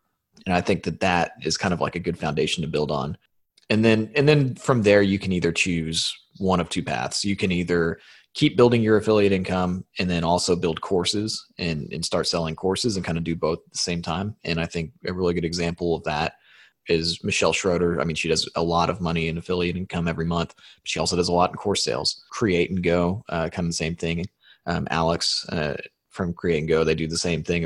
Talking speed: 240 wpm